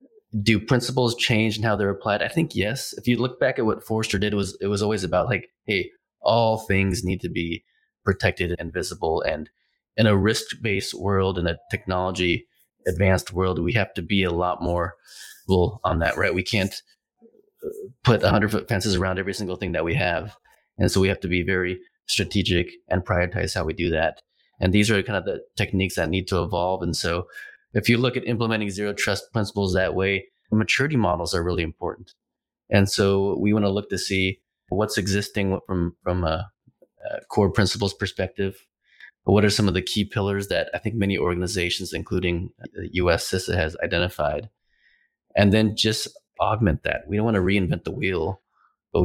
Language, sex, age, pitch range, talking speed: English, male, 30-49, 90-105 Hz, 195 wpm